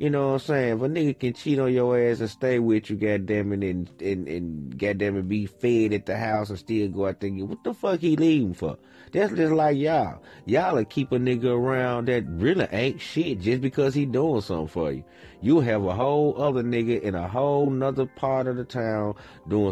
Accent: American